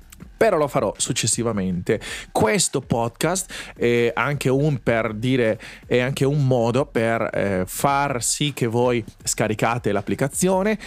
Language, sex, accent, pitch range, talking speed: Italian, male, native, 110-155 Hz, 125 wpm